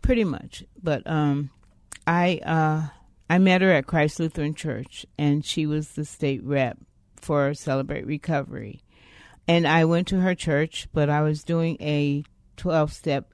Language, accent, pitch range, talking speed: English, American, 130-155 Hz, 155 wpm